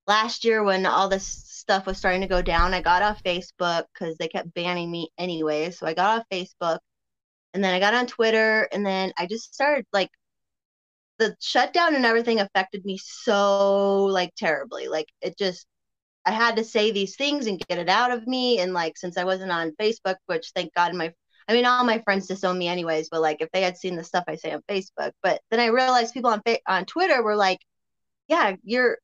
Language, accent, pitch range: English, American, 180-230 Hz